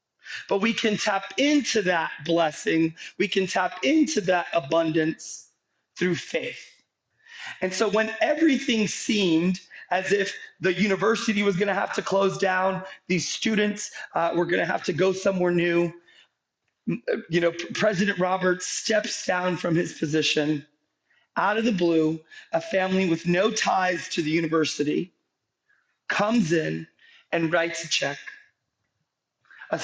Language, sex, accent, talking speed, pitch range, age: English, male, American, 145 wpm, 165-205 Hz, 30-49